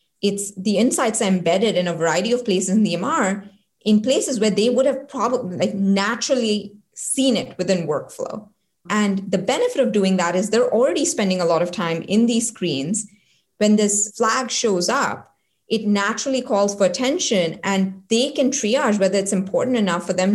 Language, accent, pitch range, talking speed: English, Indian, 185-240 Hz, 185 wpm